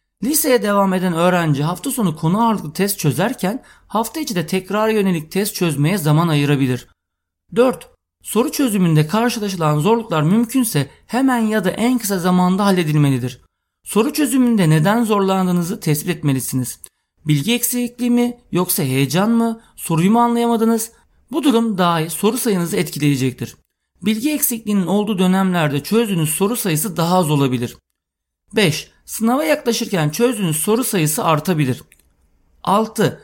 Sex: male